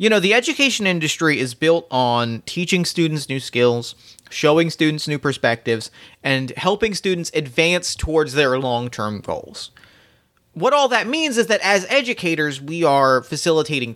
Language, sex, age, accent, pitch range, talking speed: English, male, 30-49, American, 135-185 Hz, 150 wpm